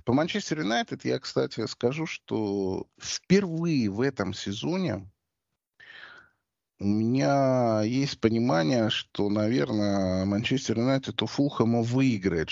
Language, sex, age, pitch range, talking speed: Russian, male, 30-49, 105-155 Hz, 105 wpm